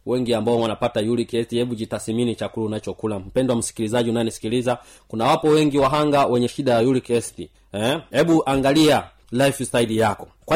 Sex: male